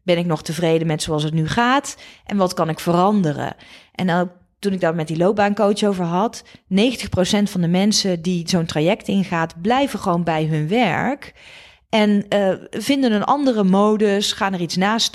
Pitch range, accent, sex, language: 165-220 Hz, Dutch, female, Dutch